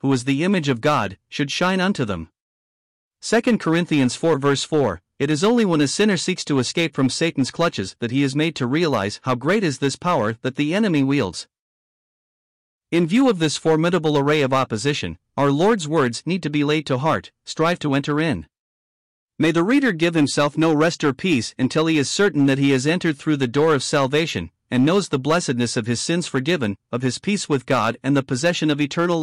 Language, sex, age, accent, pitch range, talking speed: English, male, 50-69, American, 130-170 Hz, 210 wpm